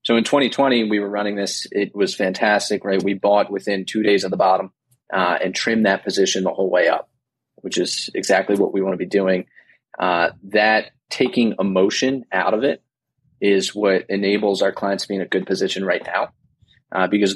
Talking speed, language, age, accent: 205 wpm, English, 30-49, American